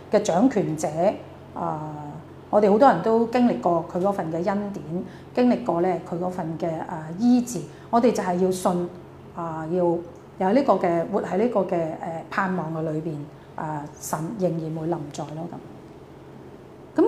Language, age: Chinese, 30-49